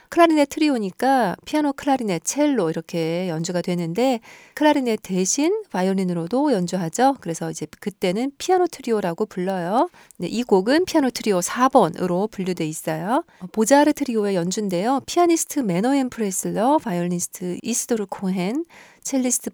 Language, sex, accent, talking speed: English, female, Korean, 110 wpm